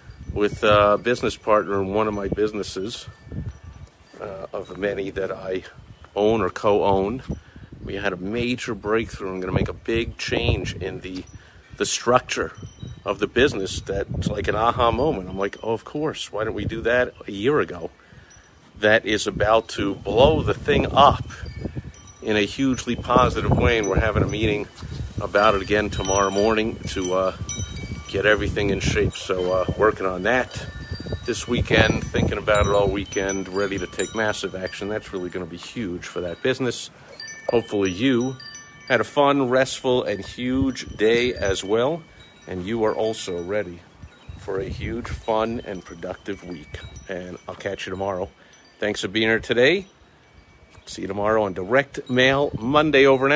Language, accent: English, American